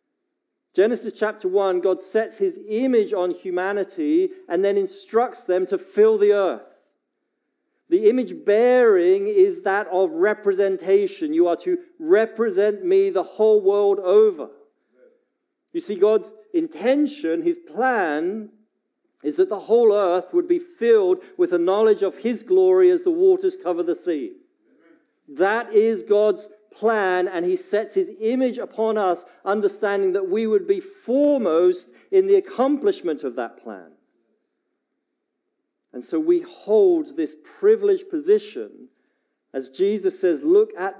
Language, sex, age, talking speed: English, male, 40-59, 140 wpm